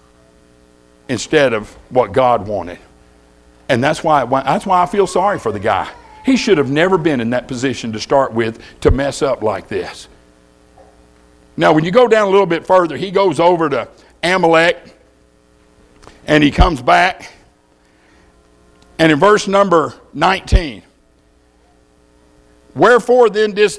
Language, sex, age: English, male, 60-79